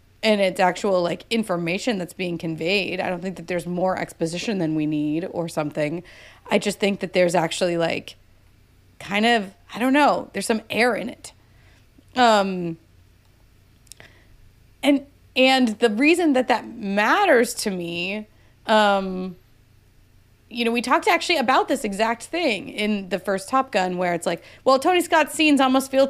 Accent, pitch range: American, 175-245 Hz